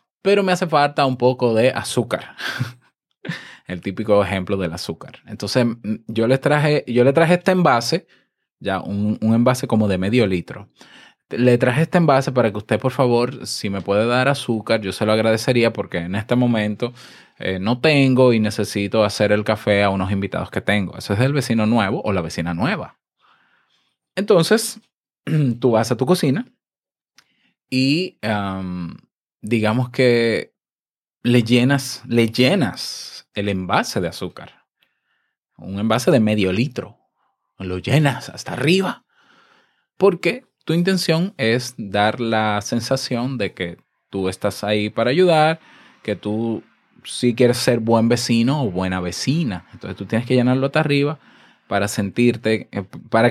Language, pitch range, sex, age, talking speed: Spanish, 105-130 Hz, male, 20-39, 150 wpm